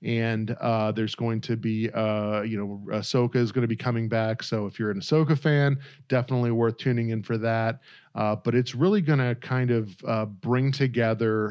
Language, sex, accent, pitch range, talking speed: English, male, American, 110-135 Hz, 205 wpm